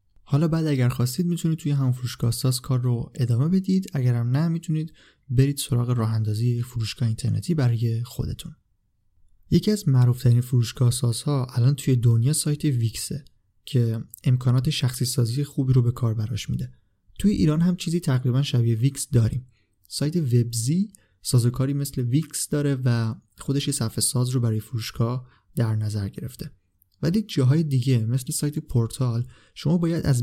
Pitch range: 120-150 Hz